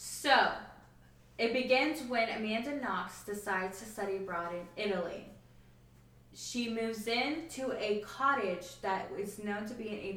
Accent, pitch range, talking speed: American, 175-215 Hz, 150 wpm